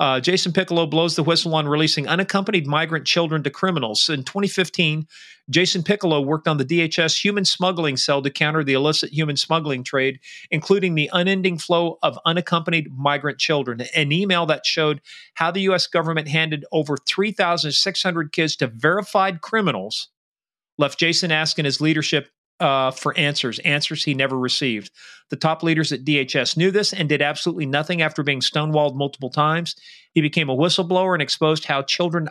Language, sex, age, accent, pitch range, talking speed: English, male, 40-59, American, 140-170 Hz, 165 wpm